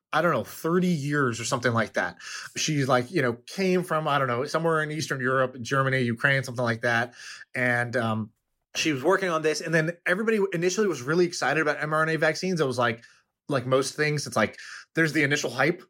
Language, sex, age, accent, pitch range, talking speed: English, male, 20-39, American, 125-165 Hz, 210 wpm